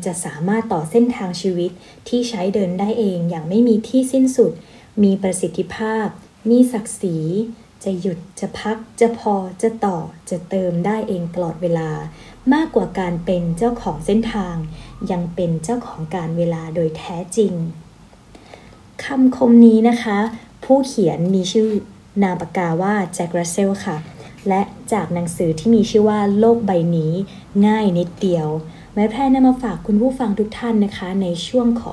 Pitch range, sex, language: 175-225 Hz, female, Thai